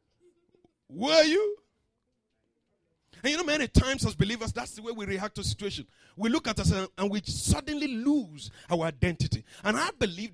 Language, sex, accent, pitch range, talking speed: English, male, Nigerian, 190-270 Hz, 170 wpm